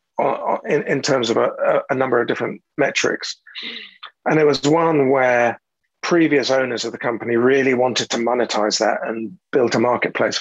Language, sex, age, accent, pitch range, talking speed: English, male, 40-59, British, 115-150 Hz, 165 wpm